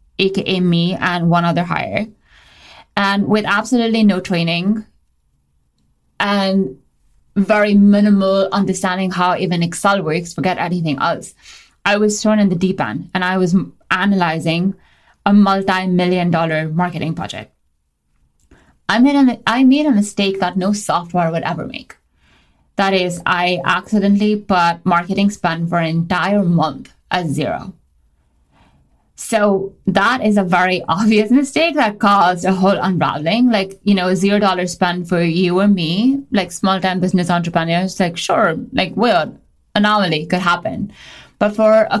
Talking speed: 140 wpm